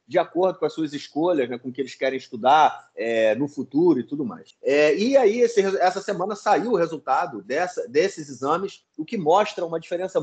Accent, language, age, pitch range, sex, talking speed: Brazilian, Portuguese, 30-49, 135-200 Hz, male, 190 wpm